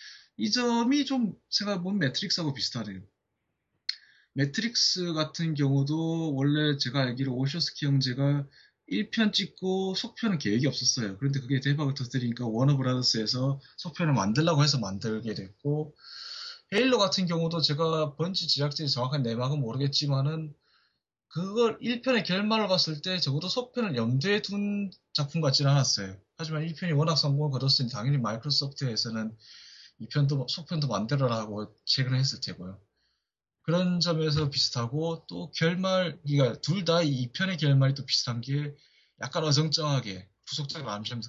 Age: 20-39